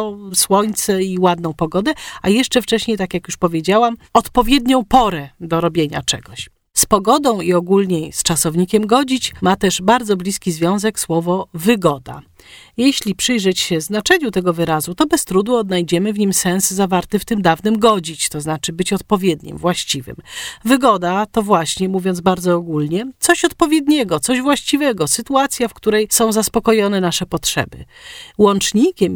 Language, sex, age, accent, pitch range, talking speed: Polish, female, 40-59, native, 175-240 Hz, 145 wpm